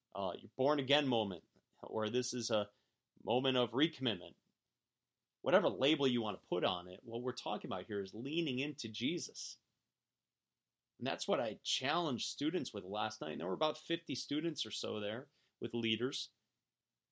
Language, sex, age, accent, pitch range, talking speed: English, male, 30-49, American, 115-145 Hz, 170 wpm